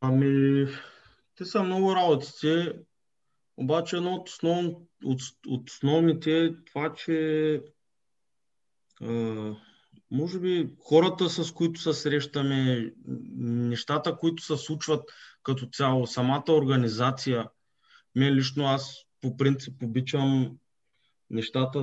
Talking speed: 95 wpm